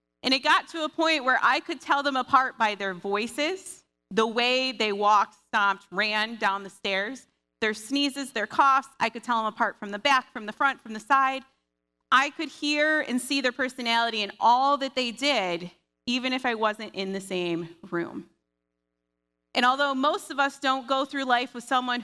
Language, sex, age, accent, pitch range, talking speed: English, female, 30-49, American, 200-265 Hz, 200 wpm